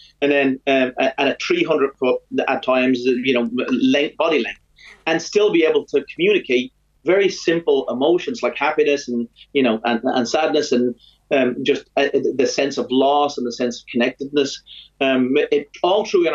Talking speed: 185 wpm